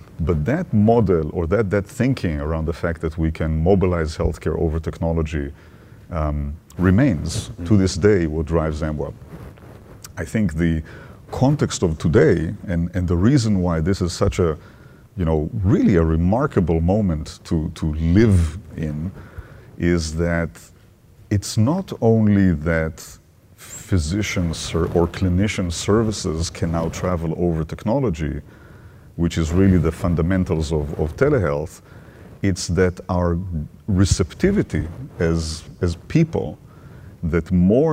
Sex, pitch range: male, 80-100 Hz